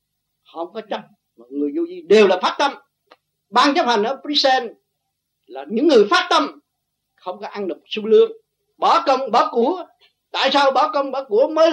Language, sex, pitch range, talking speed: Vietnamese, male, 205-315 Hz, 195 wpm